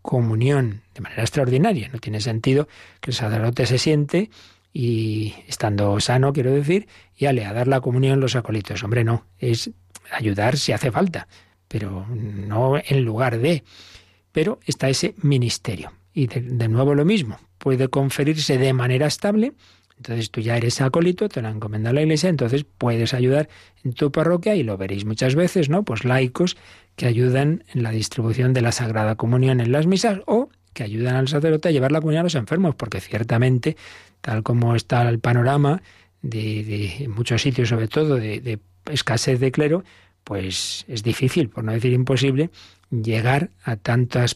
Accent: Spanish